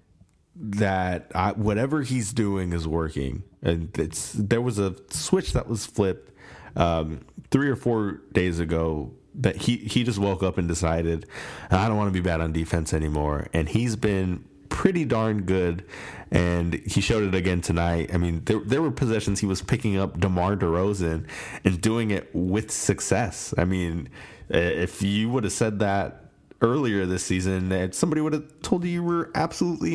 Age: 30-49